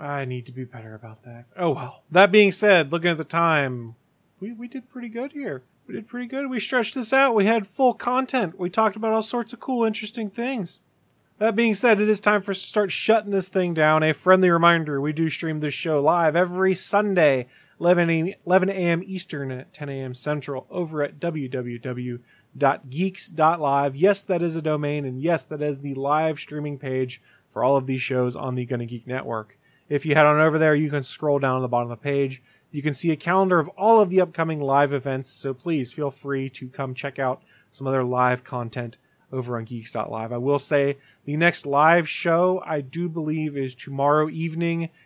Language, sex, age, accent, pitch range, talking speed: English, male, 30-49, American, 130-185 Hz, 210 wpm